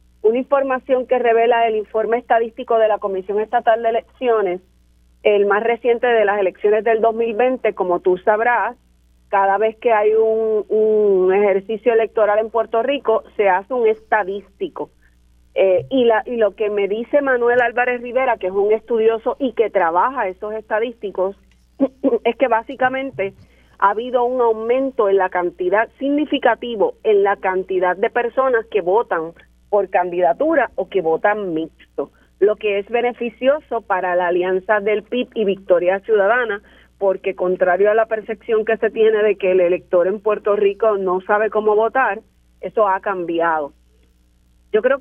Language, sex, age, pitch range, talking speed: Spanish, female, 40-59, 190-235 Hz, 155 wpm